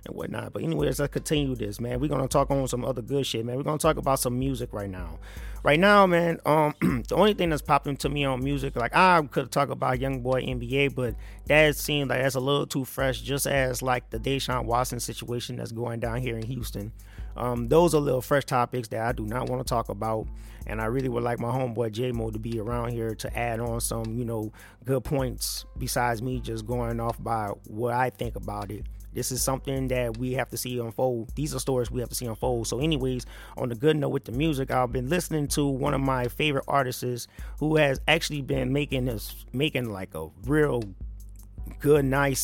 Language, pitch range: English, 115-140 Hz